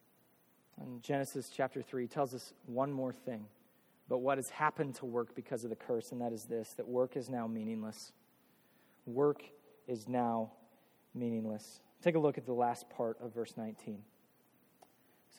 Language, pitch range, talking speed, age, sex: English, 120-140 Hz, 165 wpm, 20-39, male